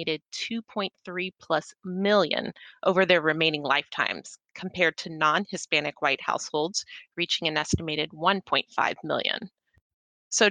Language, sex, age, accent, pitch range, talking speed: English, female, 30-49, American, 165-225 Hz, 95 wpm